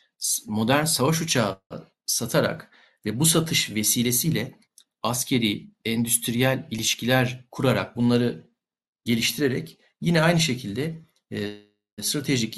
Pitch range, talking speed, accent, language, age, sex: 115-145 Hz, 85 wpm, native, Turkish, 50-69, male